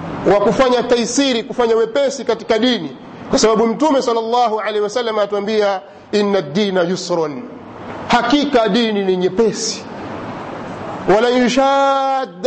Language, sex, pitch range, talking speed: Swahili, male, 210-260 Hz, 110 wpm